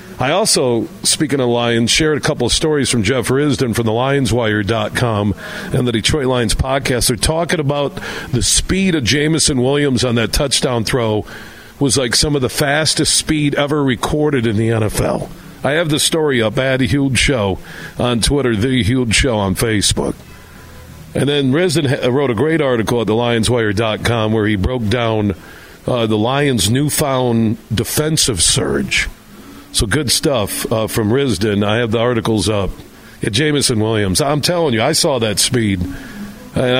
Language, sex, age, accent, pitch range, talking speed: English, male, 50-69, American, 110-145 Hz, 165 wpm